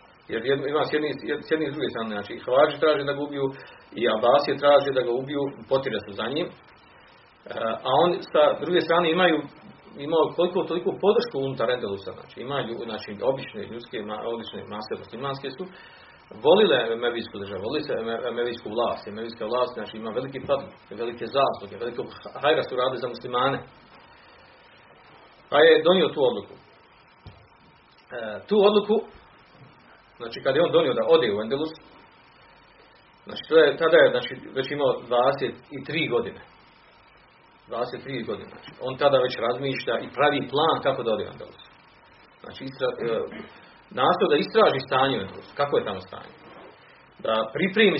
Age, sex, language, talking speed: 40-59, male, Croatian, 150 wpm